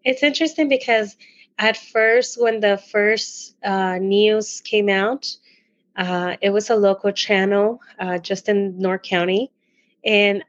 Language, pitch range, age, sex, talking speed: English, 195-245 Hz, 20-39, female, 135 wpm